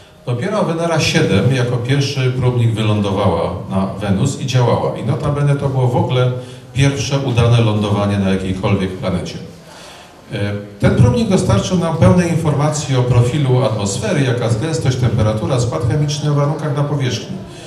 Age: 40-59